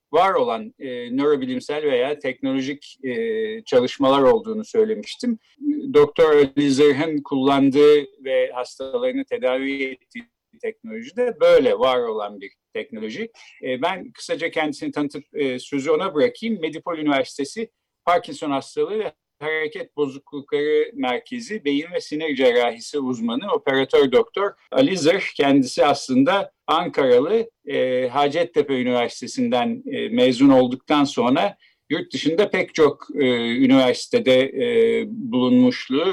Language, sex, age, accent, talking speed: Turkish, male, 50-69, native, 110 wpm